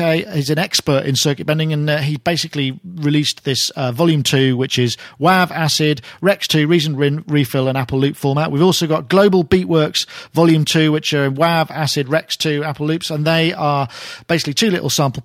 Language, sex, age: English, male, 40-59